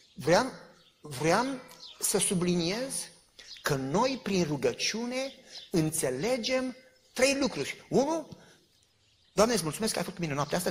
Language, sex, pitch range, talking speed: Romanian, male, 190-270 Hz, 125 wpm